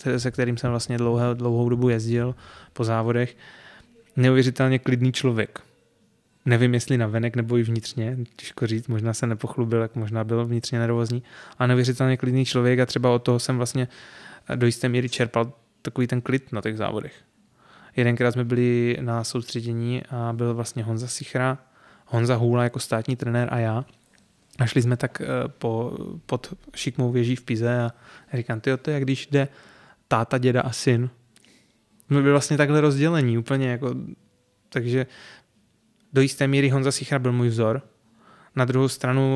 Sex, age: male, 20-39